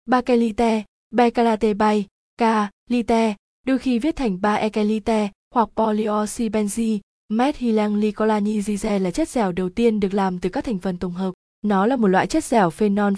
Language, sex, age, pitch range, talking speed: Vietnamese, female, 20-39, 195-230 Hz, 145 wpm